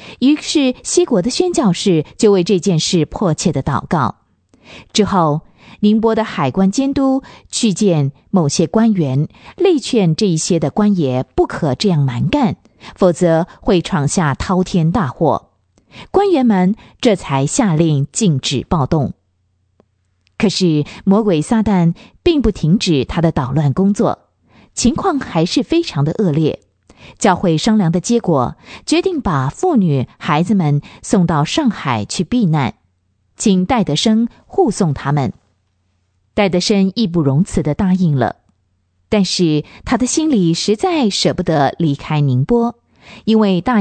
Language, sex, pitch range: Chinese, female, 150-220 Hz